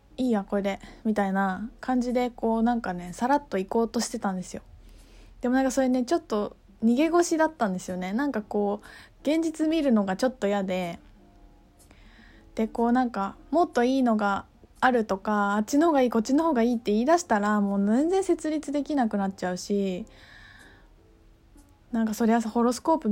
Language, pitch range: Japanese, 195-255 Hz